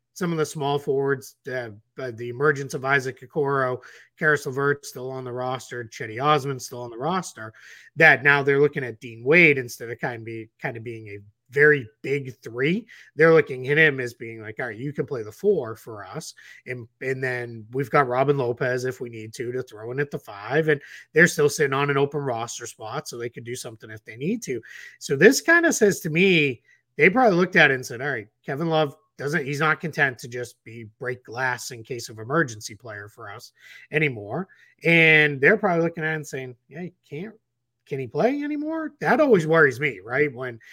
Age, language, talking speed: 30-49, English, 220 wpm